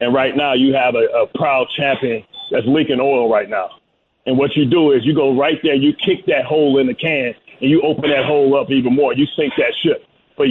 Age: 40-59